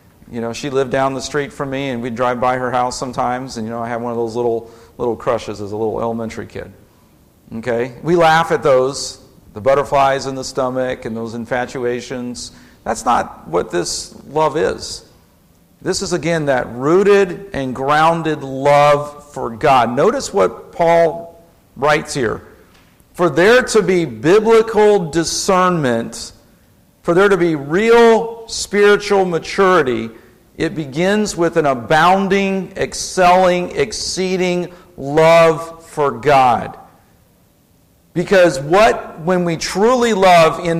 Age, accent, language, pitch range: 50-69, American, English, 130-175 Hz